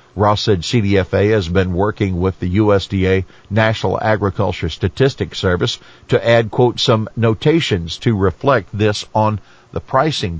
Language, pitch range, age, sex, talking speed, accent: English, 95-115 Hz, 50-69, male, 140 wpm, American